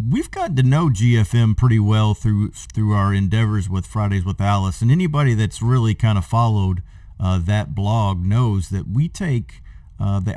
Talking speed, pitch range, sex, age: 180 wpm, 95-125 Hz, male, 40-59